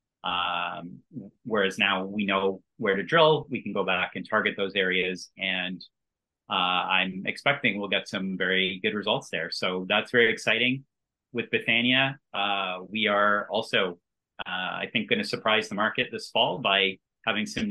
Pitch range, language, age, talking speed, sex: 95-115 Hz, English, 30-49, 170 wpm, male